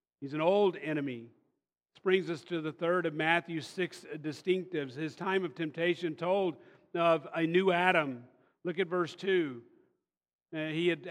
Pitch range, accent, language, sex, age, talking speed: 180-235 Hz, American, English, male, 40-59, 160 wpm